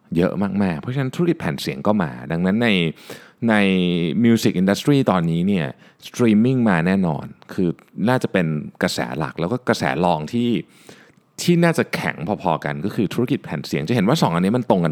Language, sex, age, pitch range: Thai, male, 20-39, 85-115 Hz